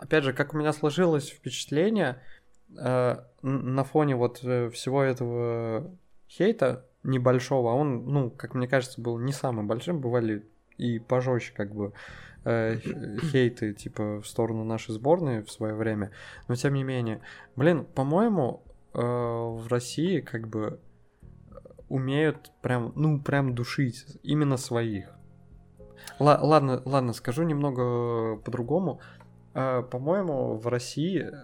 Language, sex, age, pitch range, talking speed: Russian, male, 20-39, 120-145 Hz, 125 wpm